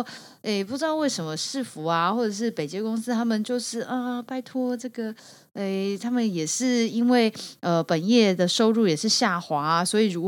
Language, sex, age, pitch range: Chinese, female, 30-49, 175-240 Hz